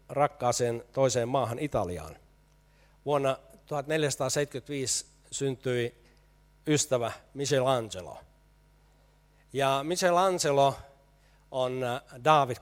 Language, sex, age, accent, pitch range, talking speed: Finnish, male, 60-79, native, 115-140 Hz, 60 wpm